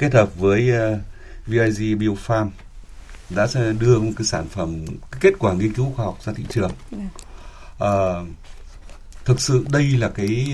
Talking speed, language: 150 wpm, Vietnamese